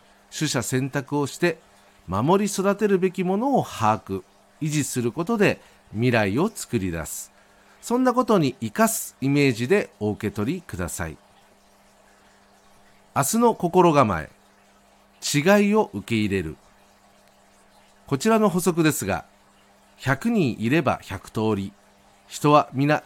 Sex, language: male, Japanese